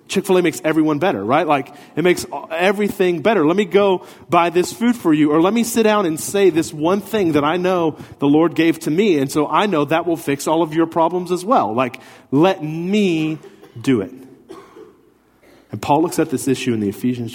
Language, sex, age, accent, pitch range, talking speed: English, male, 40-59, American, 115-160 Hz, 220 wpm